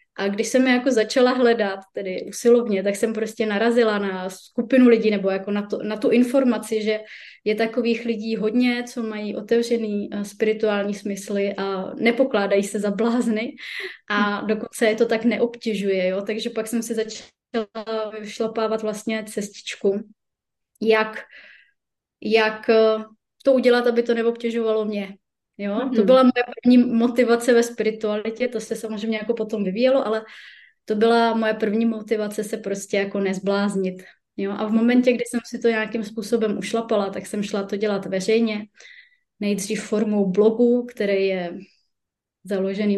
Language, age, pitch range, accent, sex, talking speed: Czech, 20-39, 205-235 Hz, native, female, 150 wpm